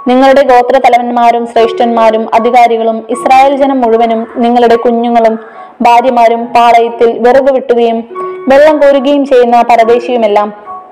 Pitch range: 230-260 Hz